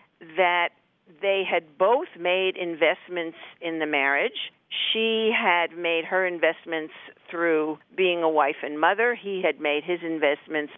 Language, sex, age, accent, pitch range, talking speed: English, female, 50-69, American, 145-180 Hz, 140 wpm